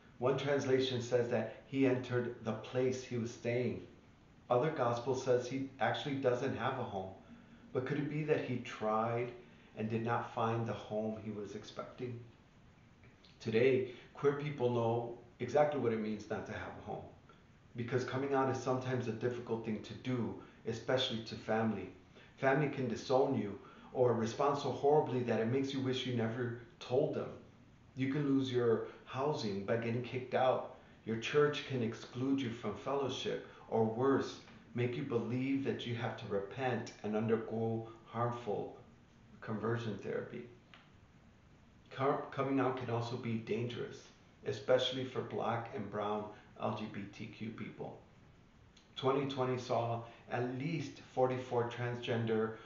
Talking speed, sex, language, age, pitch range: 145 wpm, male, English, 40-59, 115-130 Hz